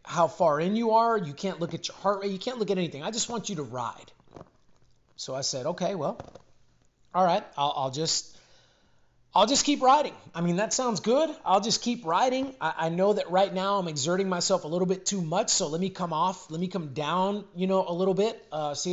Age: 30-49